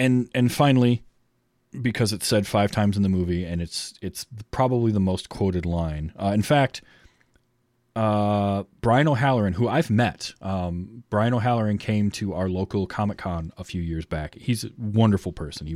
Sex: male